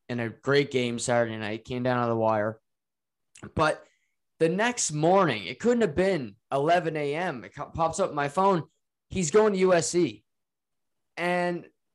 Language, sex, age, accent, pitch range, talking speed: English, male, 20-39, American, 130-165 Hz, 160 wpm